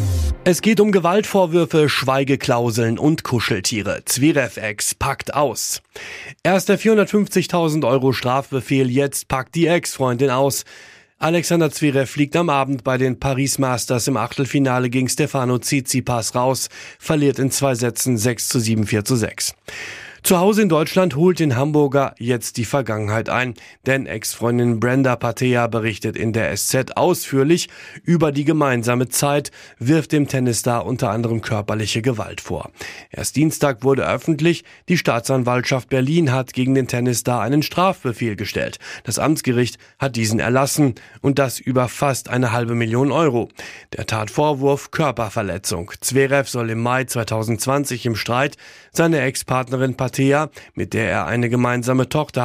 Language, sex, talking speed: German, male, 140 wpm